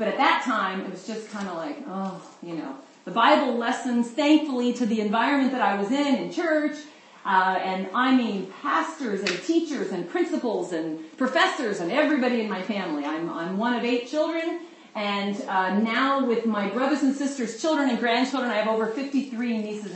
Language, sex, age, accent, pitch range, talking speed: English, female, 40-59, American, 205-285 Hz, 190 wpm